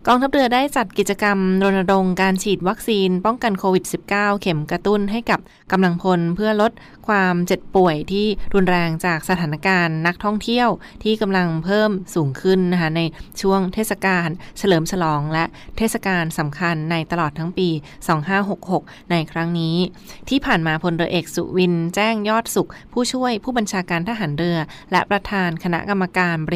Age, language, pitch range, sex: 20-39, Thai, 170-200 Hz, female